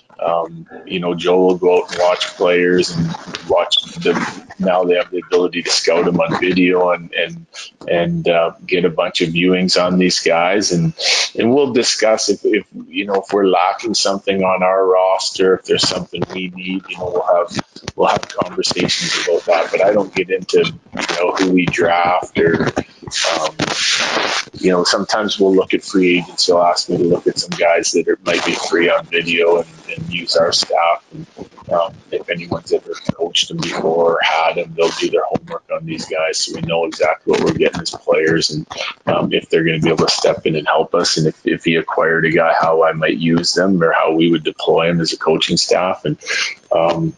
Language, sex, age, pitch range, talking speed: English, male, 30-49, 85-105 Hz, 215 wpm